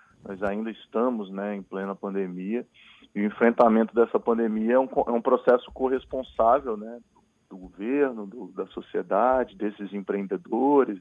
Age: 20-39